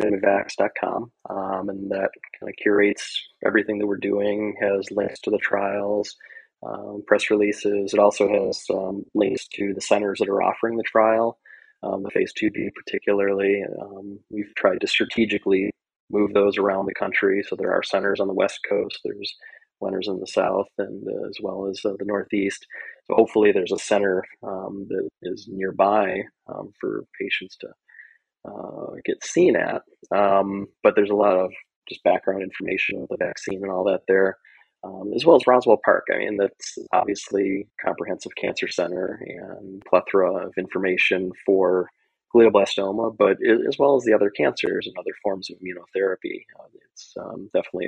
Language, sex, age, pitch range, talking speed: English, male, 20-39, 95-105 Hz, 170 wpm